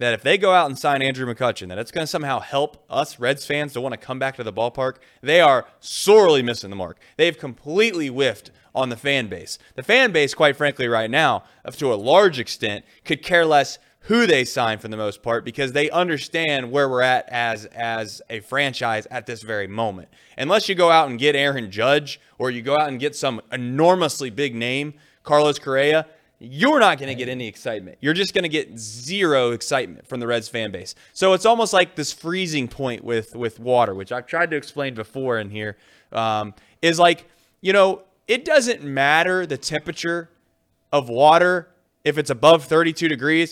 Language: English